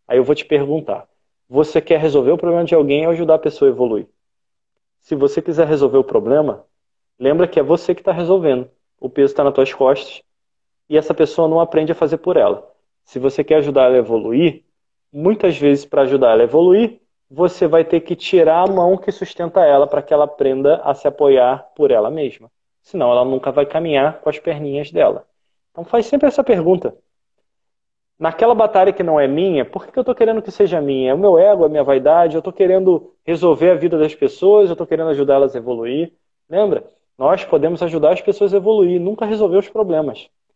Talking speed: 210 wpm